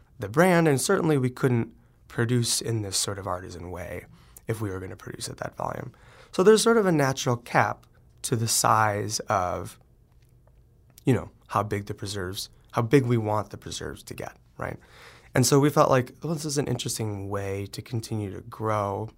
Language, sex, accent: English, male, American